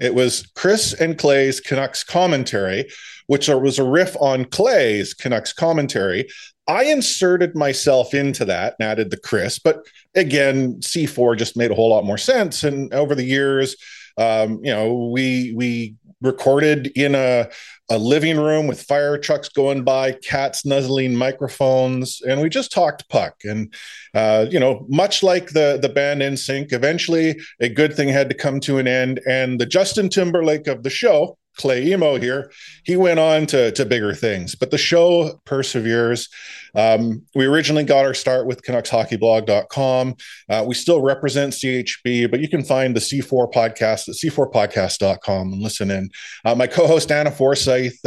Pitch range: 120-150 Hz